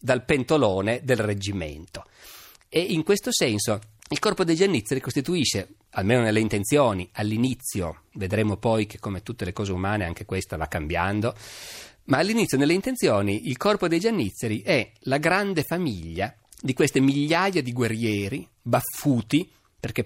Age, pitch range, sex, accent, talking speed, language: 40-59, 100-140 Hz, male, native, 145 wpm, Italian